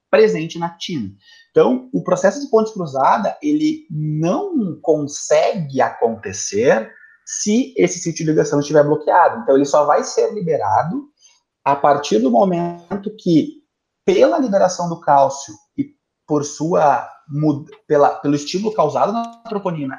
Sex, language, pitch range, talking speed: male, Portuguese, 145-215 Hz, 125 wpm